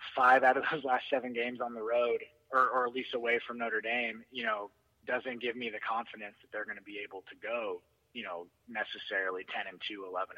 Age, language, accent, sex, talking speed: 30-49, English, American, male, 230 wpm